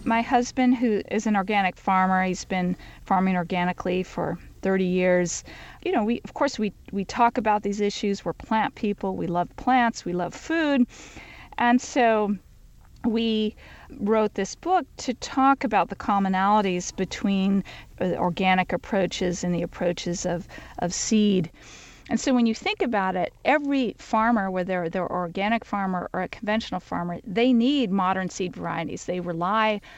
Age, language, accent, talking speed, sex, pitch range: 40-59, English, American, 160 wpm, female, 185-230 Hz